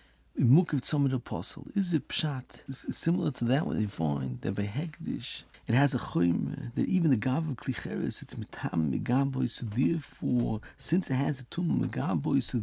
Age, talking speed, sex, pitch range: 50-69, 185 wpm, male, 110-150 Hz